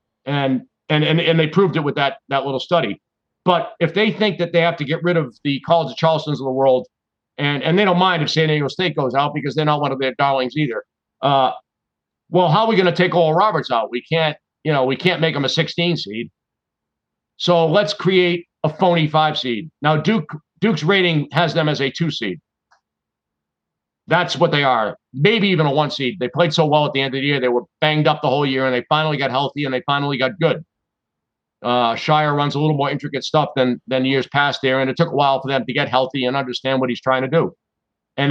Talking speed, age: 245 wpm, 50-69